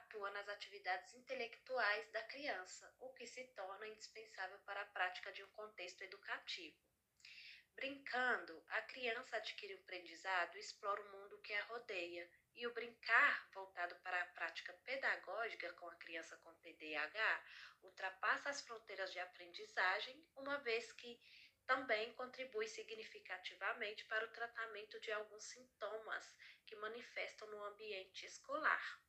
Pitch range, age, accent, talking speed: 190-250 Hz, 10-29, Brazilian, 135 wpm